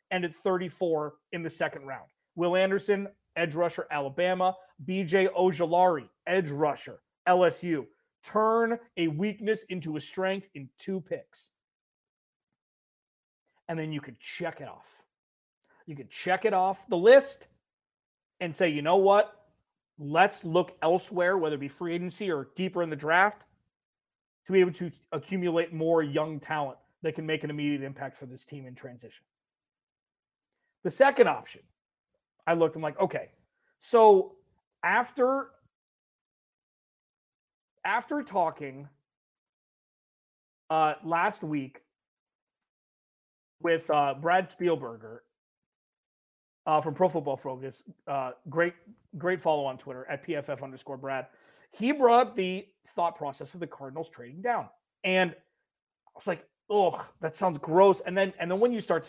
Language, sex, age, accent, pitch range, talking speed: English, male, 30-49, American, 150-190 Hz, 140 wpm